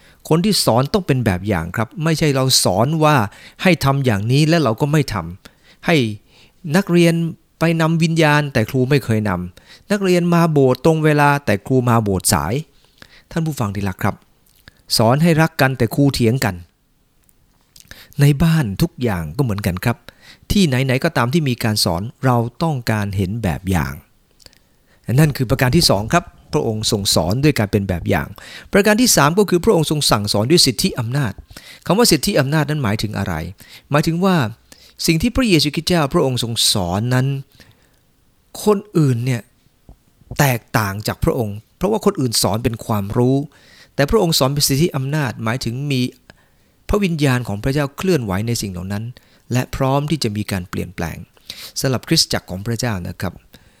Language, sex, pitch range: English, male, 110-155 Hz